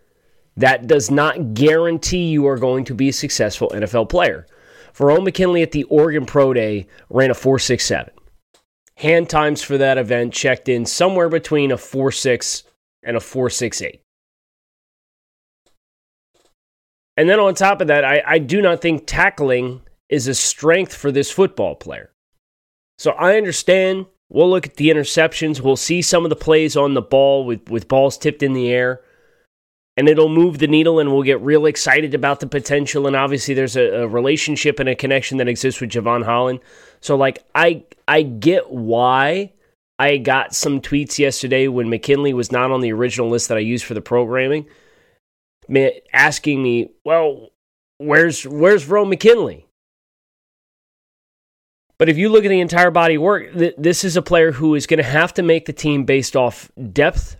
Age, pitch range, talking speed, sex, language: 30-49, 125-165 Hz, 170 wpm, male, English